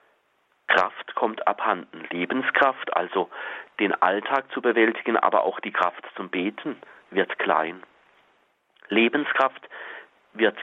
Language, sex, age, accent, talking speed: German, male, 40-59, German, 105 wpm